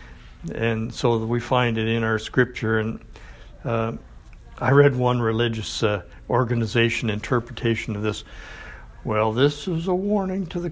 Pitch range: 110-140 Hz